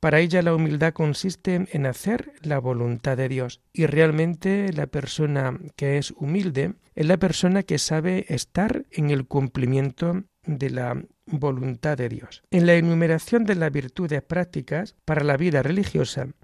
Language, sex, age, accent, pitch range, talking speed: Spanish, male, 60-79, Spanish, 140-180 Hz, 155 wpm